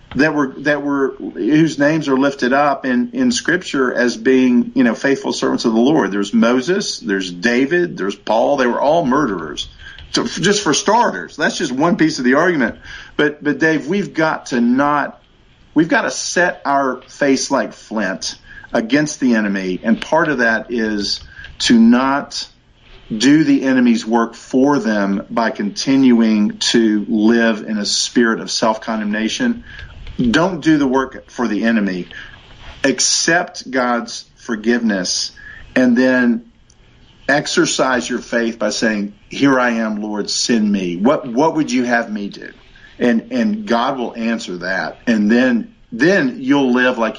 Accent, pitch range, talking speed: American, 110-145 Hz, 160 wpm